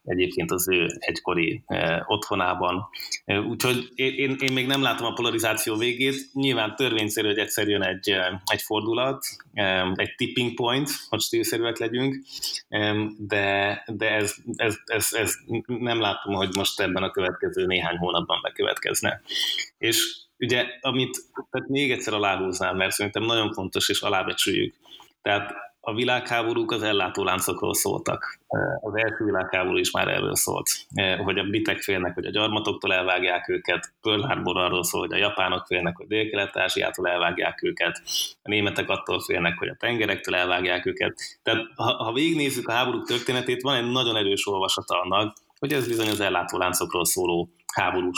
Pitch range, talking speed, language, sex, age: 100-130 Hz, 150 wpm, Hungarian, male, 20-39